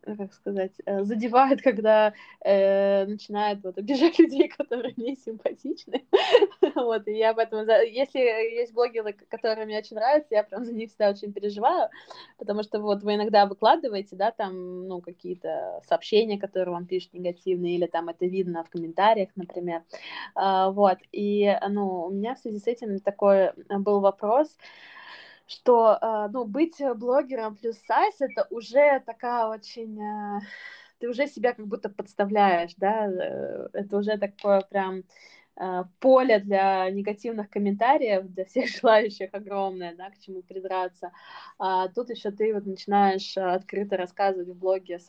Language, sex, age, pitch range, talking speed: Russian, female, 20-39, 190-235 Hz, 145 wpm